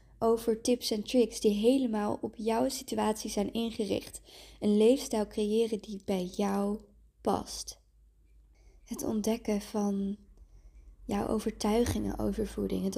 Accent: Dutch